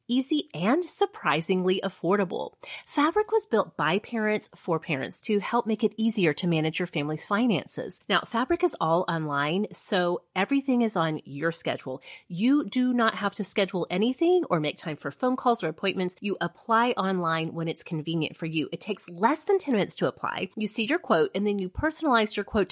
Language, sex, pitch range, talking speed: English, female, 165-240 Hz, 195 wpm